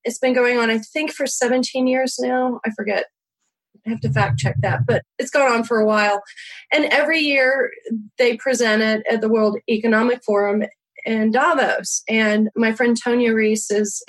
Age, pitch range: 30-49, 205-245 Hz